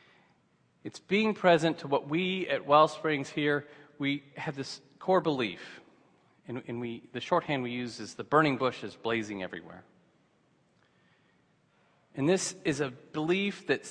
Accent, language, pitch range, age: American, English, 115-150 Hz, 40-59